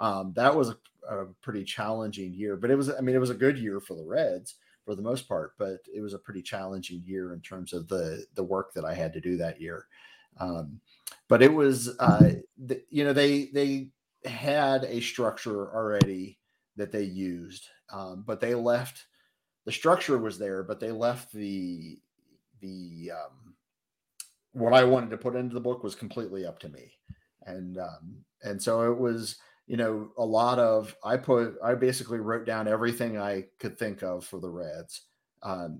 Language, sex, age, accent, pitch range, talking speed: English, male, 30-49, American, 95-120 Hz, 195 wpm